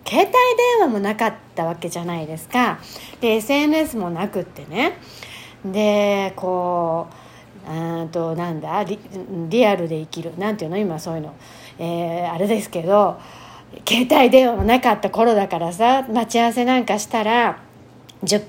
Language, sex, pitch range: Japanese, female, 185-270 Hz